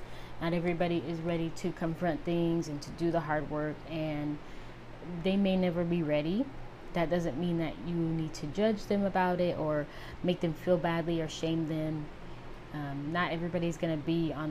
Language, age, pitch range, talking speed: English, 20-39, 155-180 Hz, 185 wpm